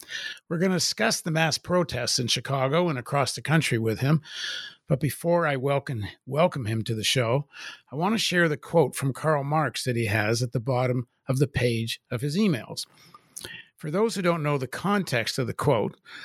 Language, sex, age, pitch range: English, male, 50-69, 120-155 Hz